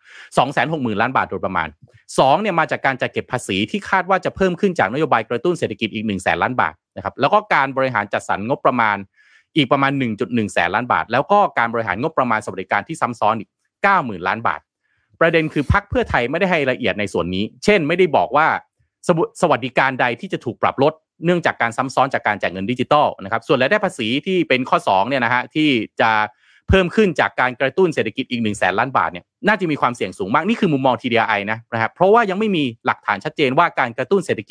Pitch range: 115-175 Hz